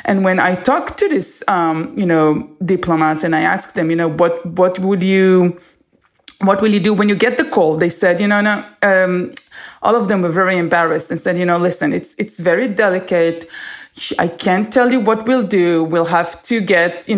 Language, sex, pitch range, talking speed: English, female, 170-215 Hz, 215 wpm